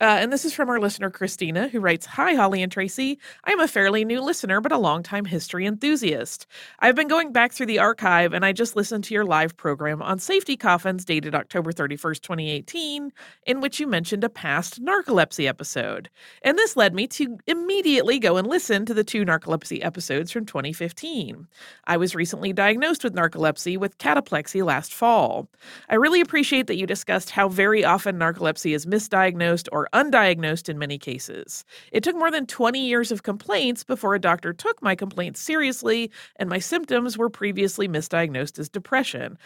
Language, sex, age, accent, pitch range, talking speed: English, female, 30-49, American, 175-245 Hz, 180 wpm